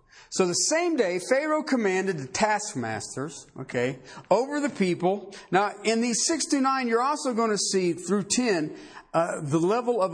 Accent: American